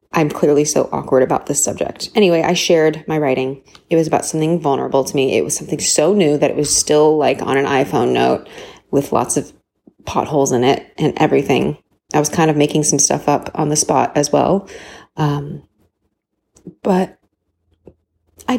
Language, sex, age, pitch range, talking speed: English, female, 30-49, 150-190 Hz, 185 wpm